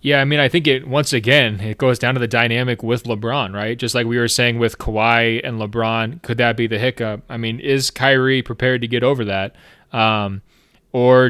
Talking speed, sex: 225 wpm, male